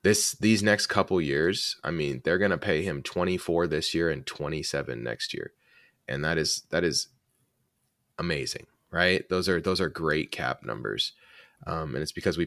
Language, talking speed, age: English, 185 wpm, 20-39